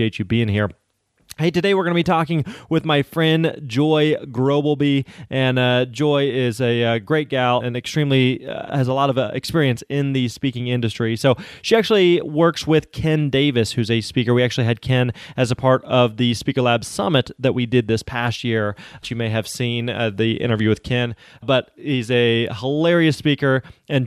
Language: English